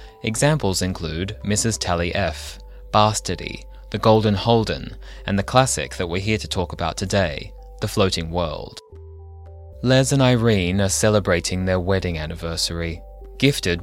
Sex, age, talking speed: male, 20-39, 135 wpm